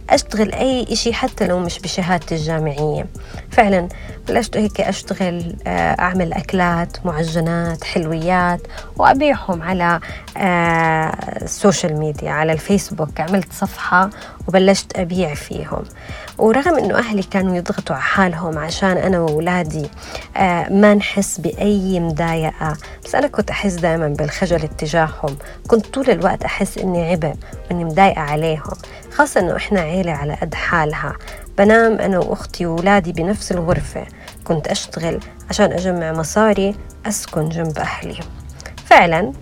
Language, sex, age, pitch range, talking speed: Arabic, female, 20-39, 165-195 Hz, 120 wpm